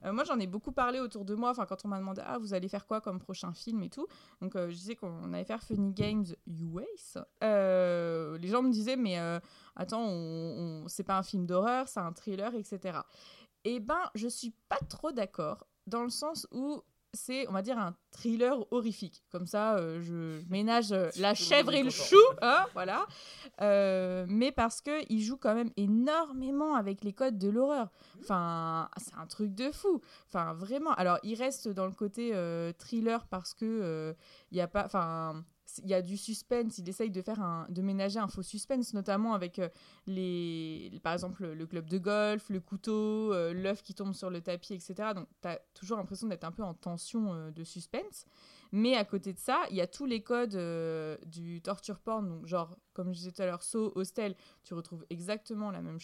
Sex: female